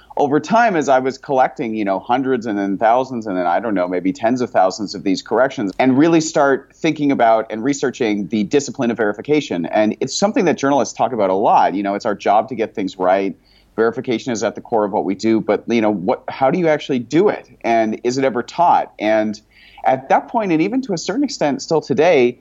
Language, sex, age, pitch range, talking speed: English, male, 30-49, 115-145 Hz, 240 wpm